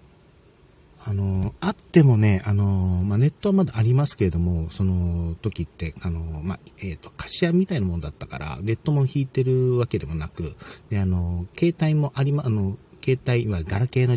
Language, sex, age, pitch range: Japanese, male, 40-59, 85-115 Hz